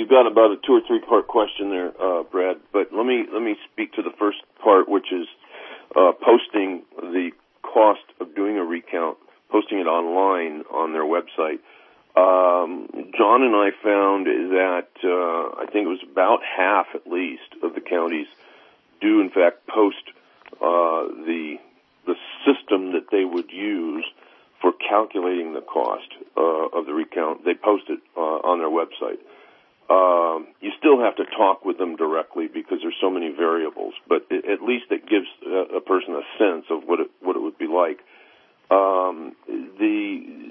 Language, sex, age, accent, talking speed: English, male, 40-59, American, 170 wpm